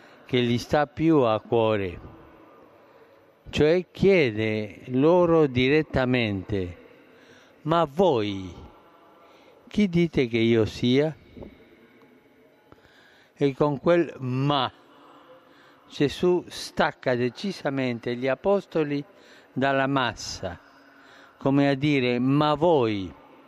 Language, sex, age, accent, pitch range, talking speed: Italian, male, 50-69, native, 120-160 Hz, 85 wpm